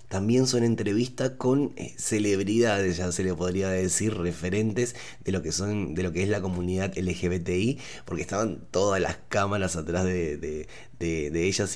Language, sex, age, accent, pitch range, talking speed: Spanish, male, 20-39, Argentinian, 90-120 Hz, 170 wpm